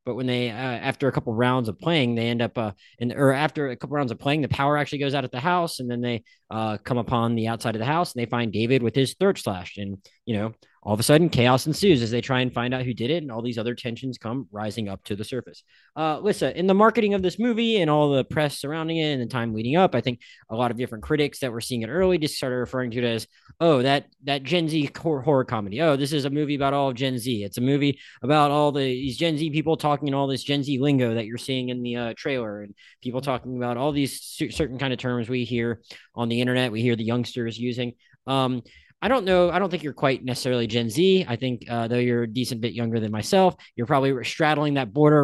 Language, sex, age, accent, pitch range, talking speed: English, male, 20-39, American, 120-150 Hz, 270 wpm